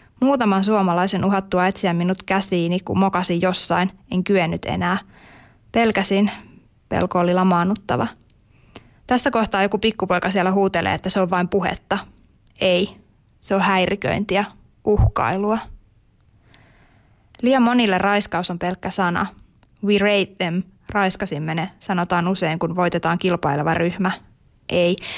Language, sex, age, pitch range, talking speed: Finnish, female, 20-39, 175-200 Hz, 120 wpm